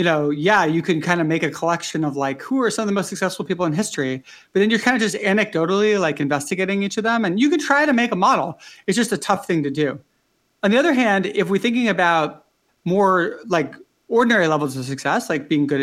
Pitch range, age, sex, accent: 155-210 Hz, 40-59, male, American